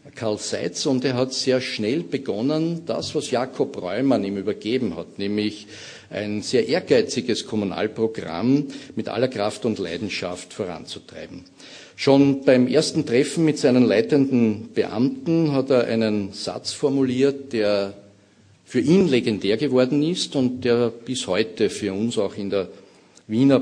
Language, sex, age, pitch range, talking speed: German, male, 50-69, 105-135 Hz, 140 wpm